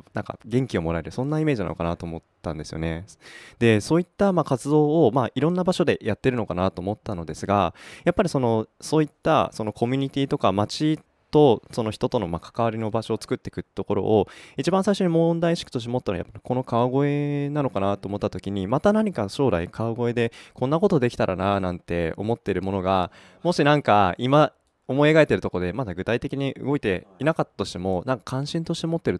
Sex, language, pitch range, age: male, Japanese, 95-135 Hz, 20-39